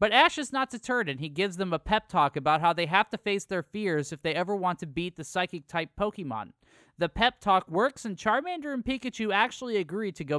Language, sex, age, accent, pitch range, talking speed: English, male, 20-39, American, 150-215 Hz, 235 wpm